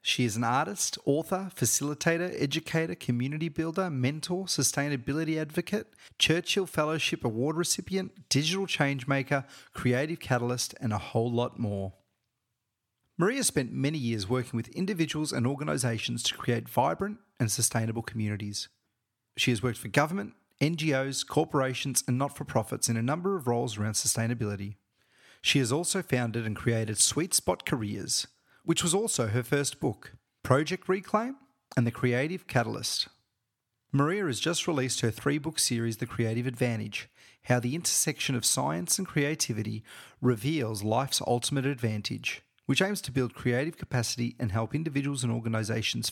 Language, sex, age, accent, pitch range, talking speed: English, male, 30-49, Australian, 115-155 Hz, 140 wpm